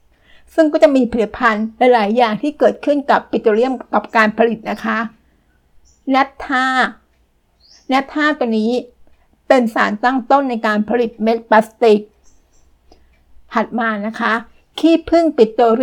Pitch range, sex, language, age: 220-255 Hz, female, Thai, 60-79